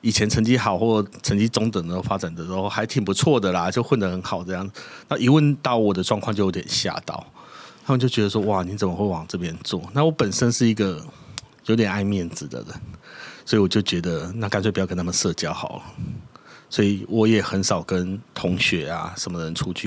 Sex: male